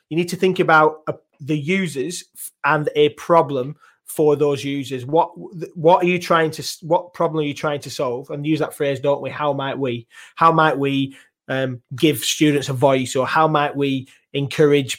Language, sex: English, male